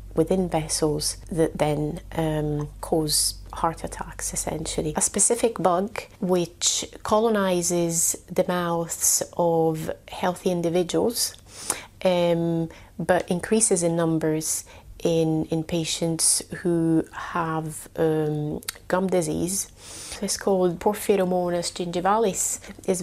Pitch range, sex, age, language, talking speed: 155-175 Hz, female, 30-49, English, 95 wpm